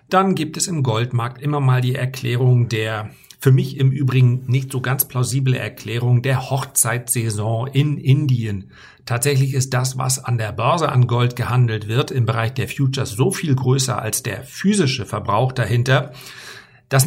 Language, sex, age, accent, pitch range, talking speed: German, male, 50-69, German, 120-135 Hz, 165 wpm